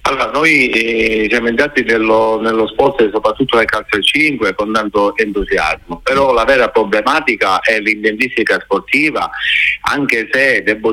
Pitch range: 105-130 Hz